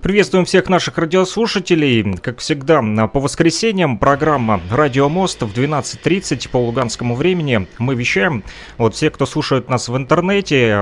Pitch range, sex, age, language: 120-170 Hz, male, 30-49, Russian